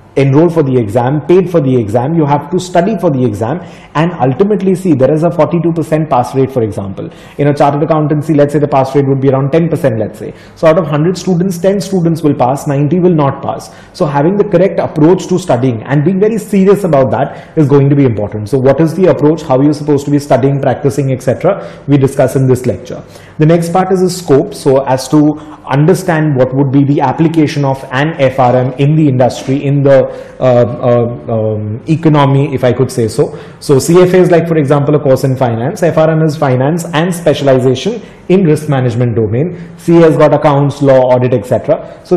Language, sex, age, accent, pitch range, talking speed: English, male, 30-49, Indian, 130-160 Hz, 210 wpm